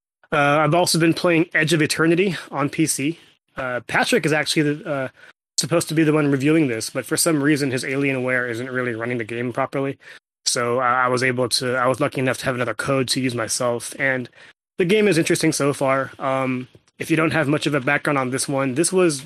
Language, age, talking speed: English, 20-39, 225 wpm